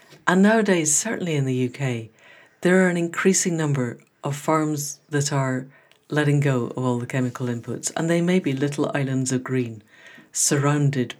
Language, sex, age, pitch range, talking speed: English, female, 60-79, 130-160 Hz, 165 wpm